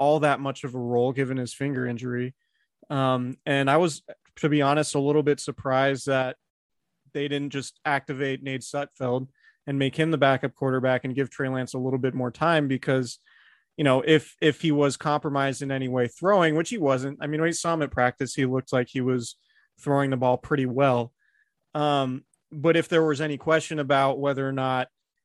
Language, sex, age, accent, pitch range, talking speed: English, male, 30-49, American, 130-150 Hz, 205 wpm